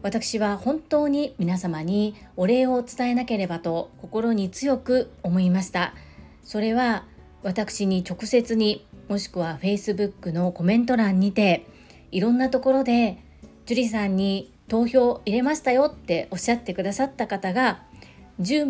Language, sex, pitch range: Japanese, female, 190-245 Hz